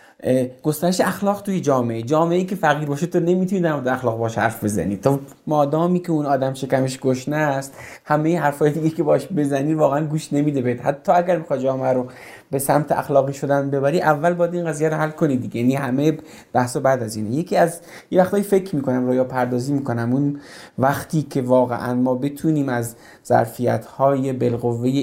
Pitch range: 120-155 Hz